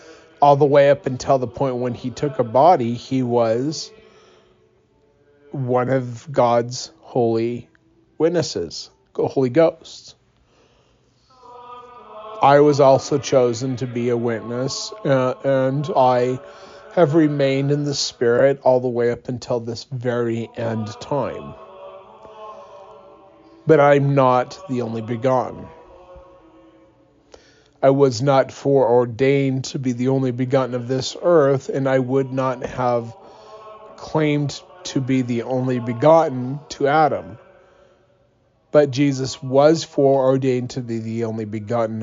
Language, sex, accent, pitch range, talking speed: English, male, American, 120-145 Hz, 125 wpm